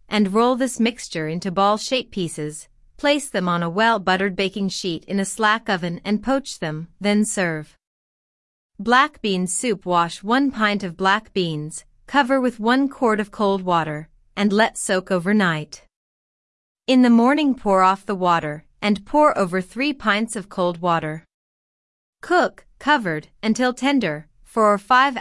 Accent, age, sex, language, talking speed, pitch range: American, 30-49, female, English, 155 wpm, 175-235 Hz